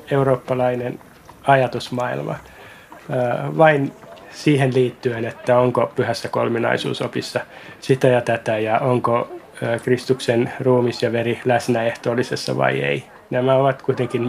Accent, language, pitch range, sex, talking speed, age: native, Finnish, 120-135 Hz, male, 115 wpm, 20-39